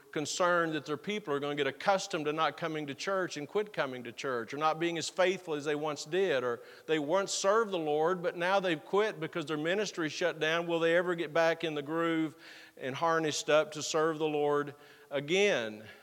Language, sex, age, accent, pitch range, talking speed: English, male, 50-69, American, 150-185 Hz, 220 wpm